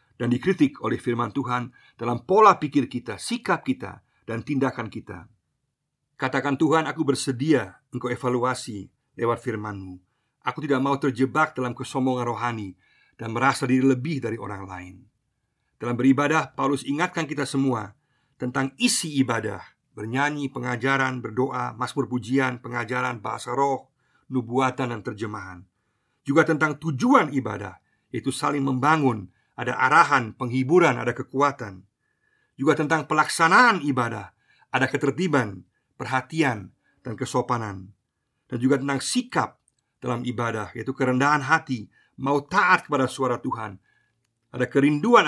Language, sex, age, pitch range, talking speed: Indonesian, male, 50-69, 120-145 Hz, 125 wpm